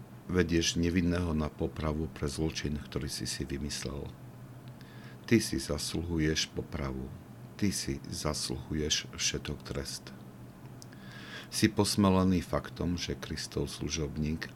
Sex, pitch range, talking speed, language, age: male, 65-85 Hz, 105 wpm, Slovak, 50-69